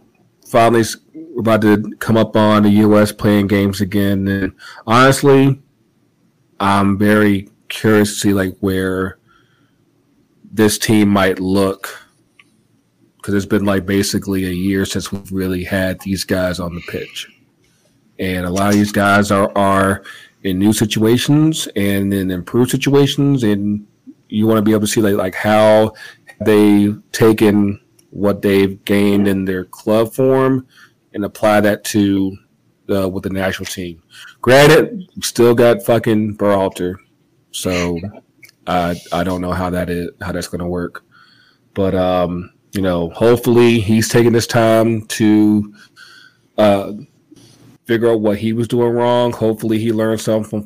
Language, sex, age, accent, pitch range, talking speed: English, male, 40-59, American, 95-115 Hz, 150 wpm